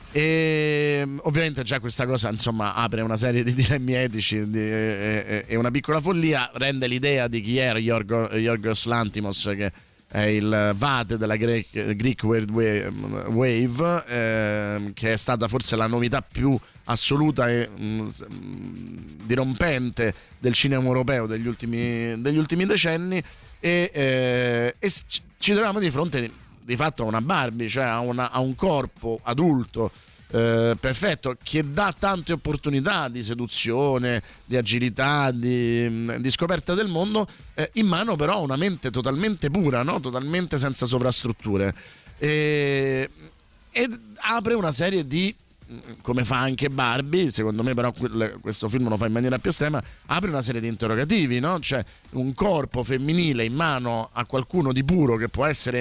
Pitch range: 115-150 Hz